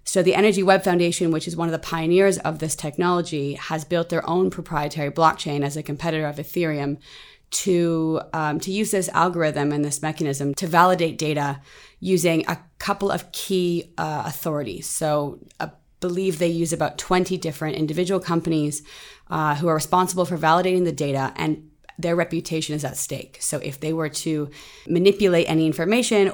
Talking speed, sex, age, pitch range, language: 175 wpm, female, 30-49, 150-180 Hz, English